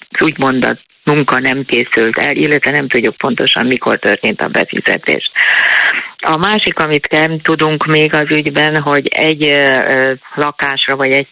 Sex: female